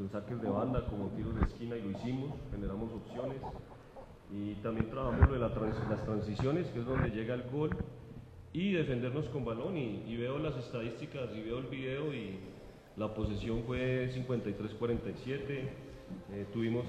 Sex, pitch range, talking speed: male, 105-135 Hz, 165 wpm